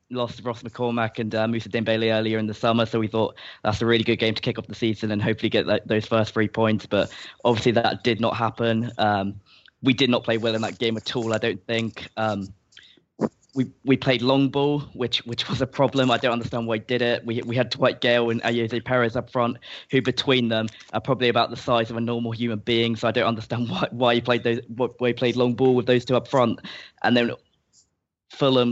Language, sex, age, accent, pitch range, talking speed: English, male, 10-29, British, 110-120 Hz, 240 wpm